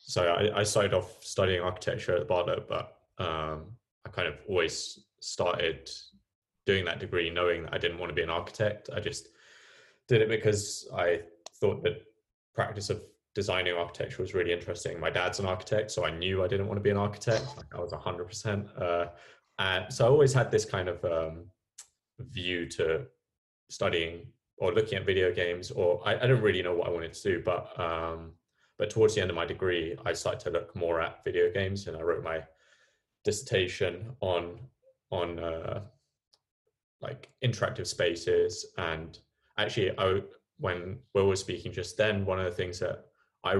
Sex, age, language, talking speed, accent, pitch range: male, 20-39, English, 185 wpm, British, 85-115 Hz